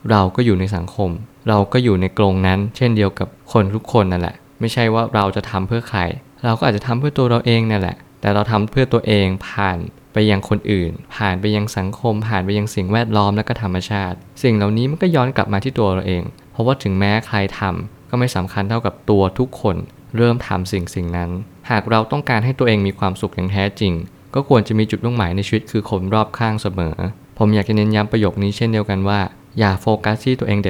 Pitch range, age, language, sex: 95-115 Hz, 20-39, Thai, male